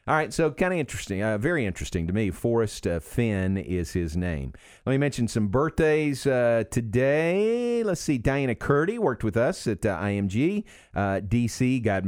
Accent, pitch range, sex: American, 95-120 Hz, male